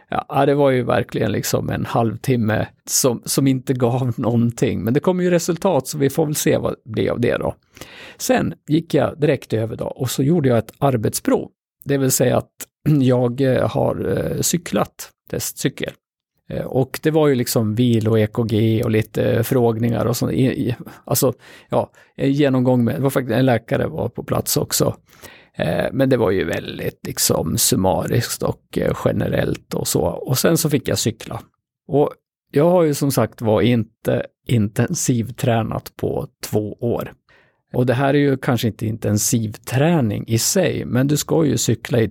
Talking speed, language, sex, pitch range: 175 wpm, Swedish, male, 115-145 Hz